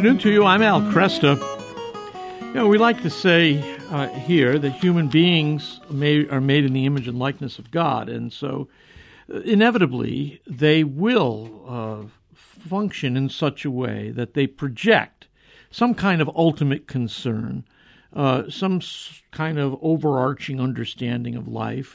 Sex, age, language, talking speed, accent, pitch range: male, 60-79, English, 150 wpm, American, 130-180 Hz